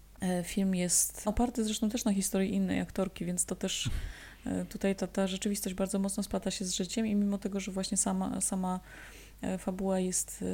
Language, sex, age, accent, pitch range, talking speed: Polish, female, 20-39, native, 180-200 Hz, 175 wpm